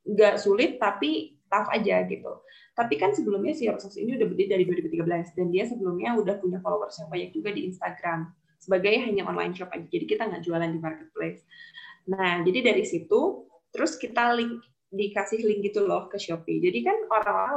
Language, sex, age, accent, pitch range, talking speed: Indonesian, female, 20-39, native, 180-230 Hz, 185 wpm